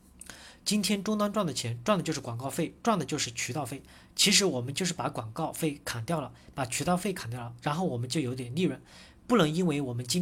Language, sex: Chinese, male